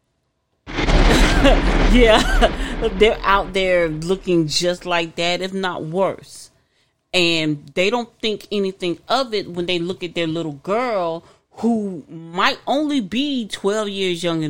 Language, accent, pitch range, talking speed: English, American, 155-205 Hz, 130 wpm